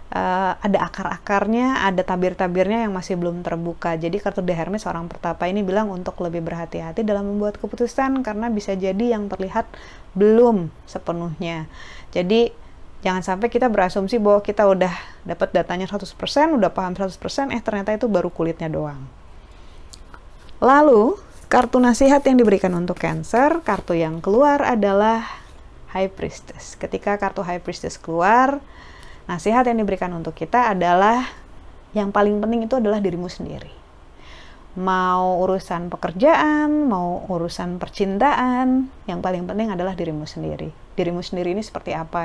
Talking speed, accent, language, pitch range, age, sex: 140 wpm, native, Indonesian, 175-225 Hz, 30-49, female